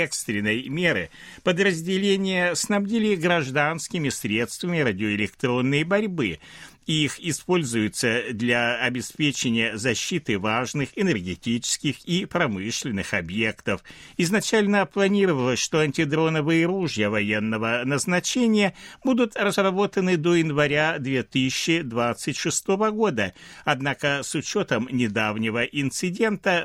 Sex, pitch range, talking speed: male, 115-175 Hz, 80 wpm